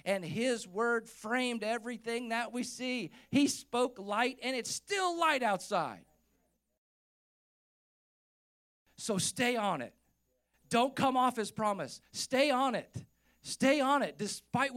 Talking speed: 130 wpm